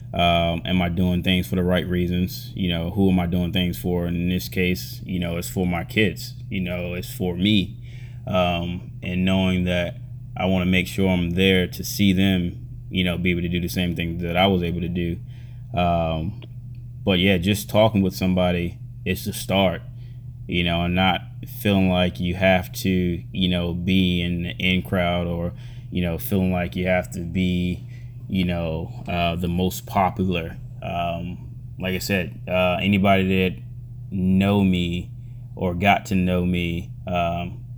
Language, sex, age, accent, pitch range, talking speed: English, male, 20-39, American, 90-120 Hz, 185 wpm